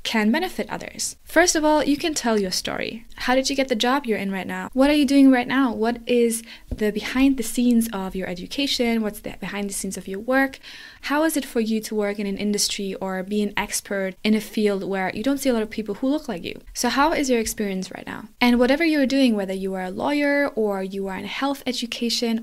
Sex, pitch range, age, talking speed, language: female, 205-265 Hz, 20-39, 255 wpm, English